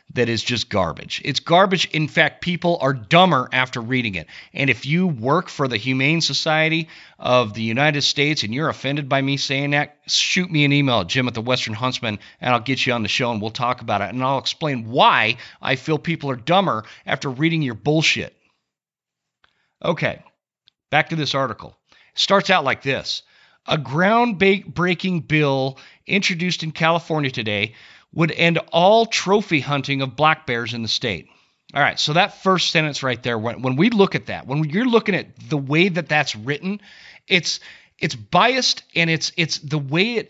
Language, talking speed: English, 190 wpm